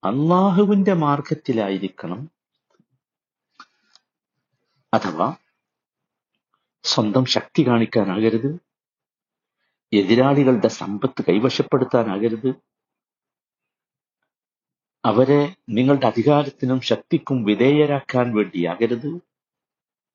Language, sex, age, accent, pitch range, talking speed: Malayalam, male, 60-79, native, 110-150 Hz, 45 wpm